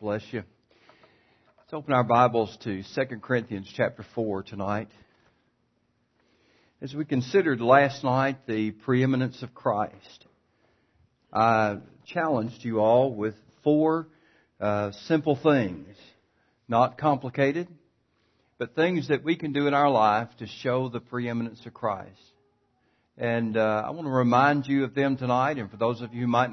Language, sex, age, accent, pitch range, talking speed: English, male, 60-79, American, 110-140 Hz, 145 wpm